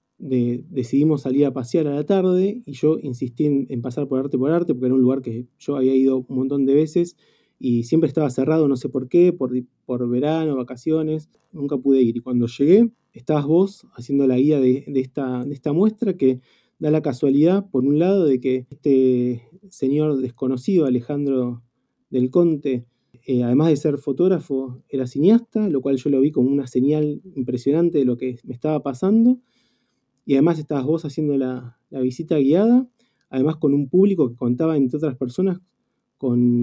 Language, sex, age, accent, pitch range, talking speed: Spanish, male, 20-39, Argentinian, 130-155 Hz, 190 wpm